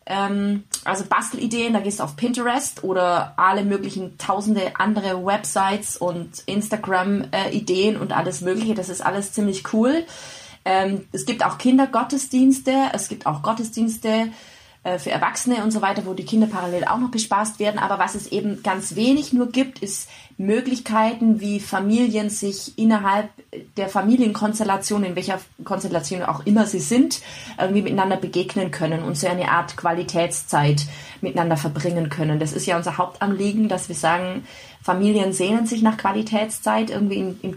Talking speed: 150 wpm